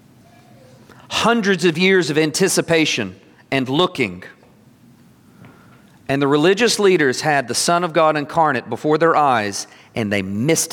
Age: 40-59